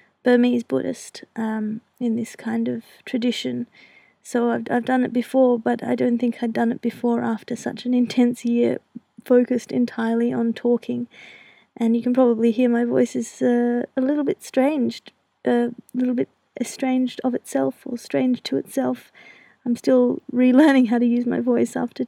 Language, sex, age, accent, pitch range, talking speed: English, female, 30-49, Australian, 230-245 Hz, 175 wpm